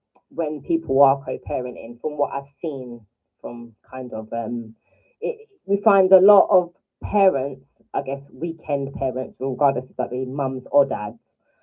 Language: English